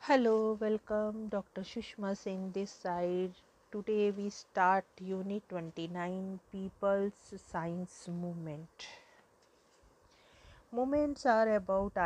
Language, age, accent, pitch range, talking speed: English, 50-69, Indian, 175-205 Hz, 90 wpm